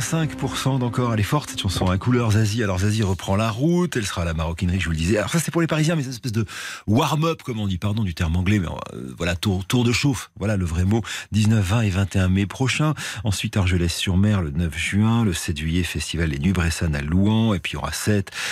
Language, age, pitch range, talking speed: French, 40-59, 85-110 Hz, 265 wpm